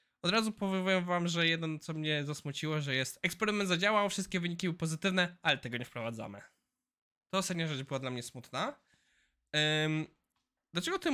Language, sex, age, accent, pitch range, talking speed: Polish, male, 20-39, native, 150-195 Hz, 165 wpm